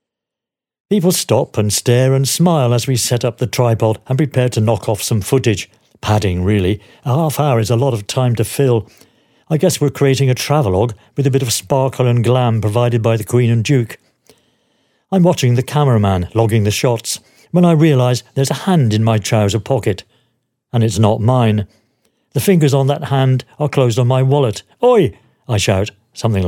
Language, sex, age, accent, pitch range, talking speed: English, male, 50-69, British, 110-140 Hz, 195 wpm